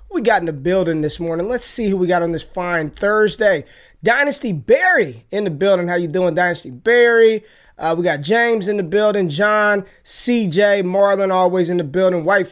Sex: male